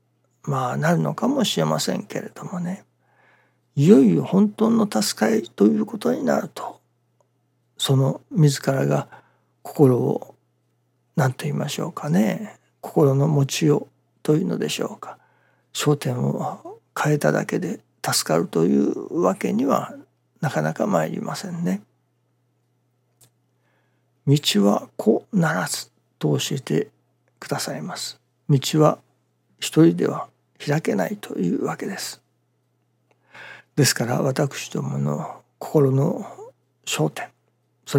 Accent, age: native, 60-79